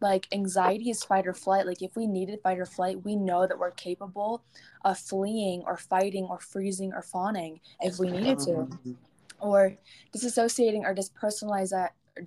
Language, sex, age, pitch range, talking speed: English, female, 20-39, 180-200 Hz, 160 wpm